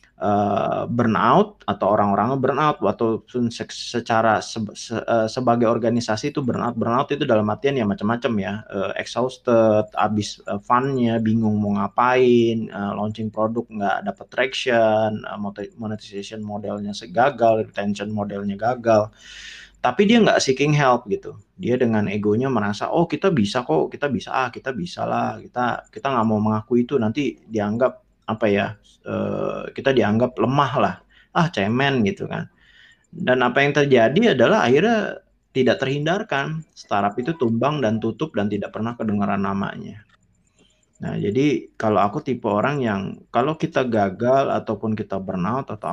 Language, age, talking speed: Indonesian, 20-39, 145 wpm